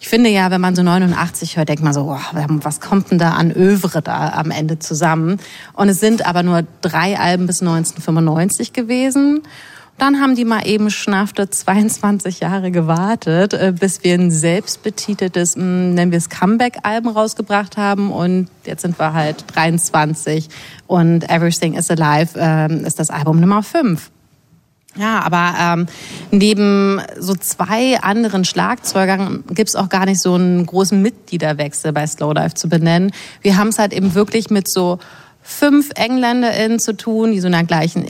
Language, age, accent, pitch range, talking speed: German, 30-49, German, 170-215 Hz, 165 wpm